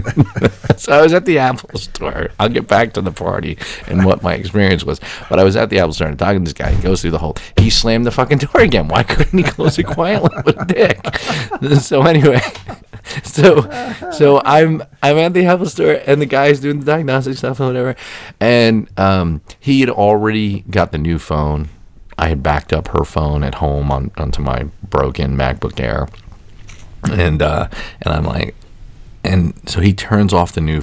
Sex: male